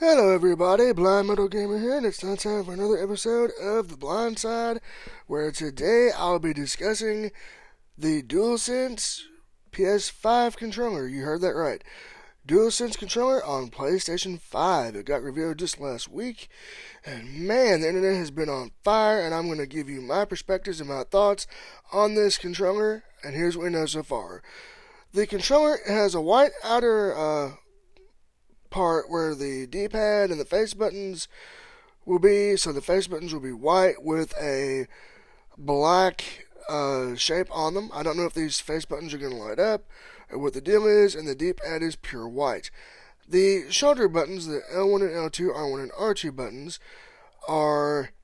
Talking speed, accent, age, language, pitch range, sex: 170 wpm, American, 20-39, English, 155-225 Hz, male